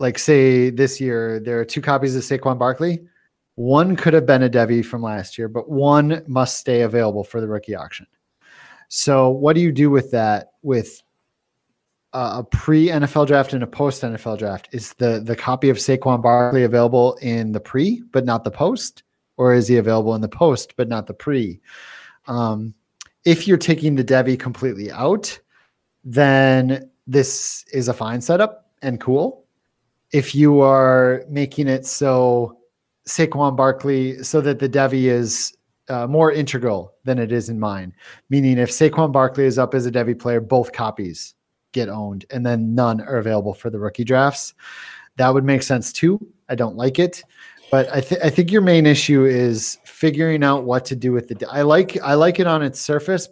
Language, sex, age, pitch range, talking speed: English, male, 30-49, 120-145 Hz, 185 wpm